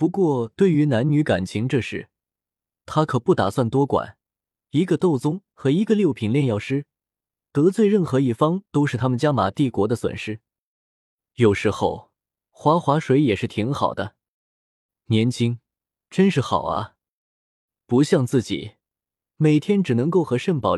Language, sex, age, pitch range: Chinese, male, 20-39, 110-155 Hz